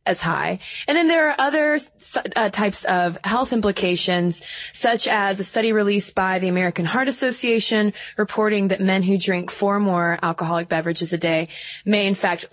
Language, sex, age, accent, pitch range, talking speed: English, female, 20-39, American, 180-215 Hz, 170 wpm